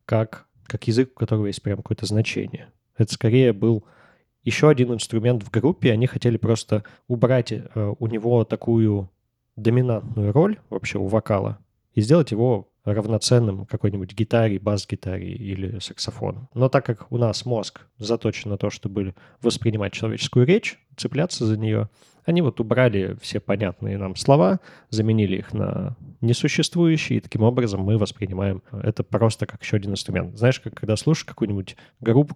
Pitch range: 105-125 Hz